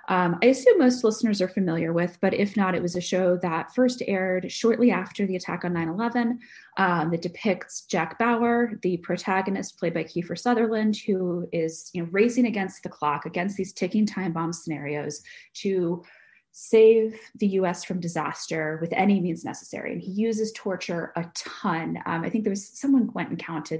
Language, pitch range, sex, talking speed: English, 175-225 Hz, female, 180 wpm